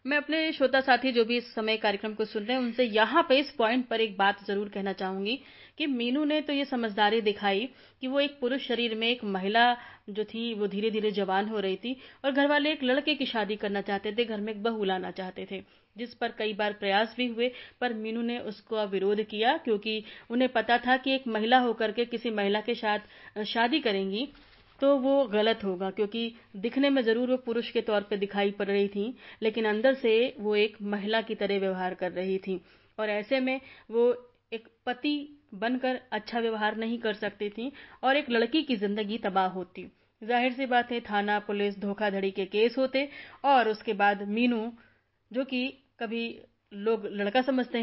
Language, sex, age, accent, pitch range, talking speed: Hindi, female, 30-49, native, 210-250 Hz, 205 wpm